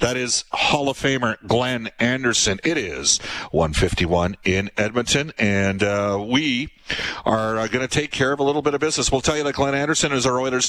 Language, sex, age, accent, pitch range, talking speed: English, male, 50-69, American, 120-150 Hz, 200 wpm